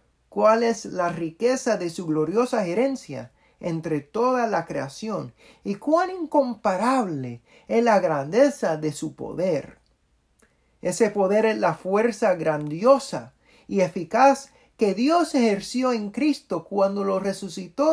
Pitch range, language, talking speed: 155-235 Hz, English, 125 wpm